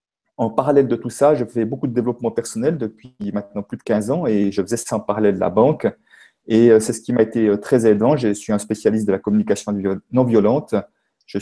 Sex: male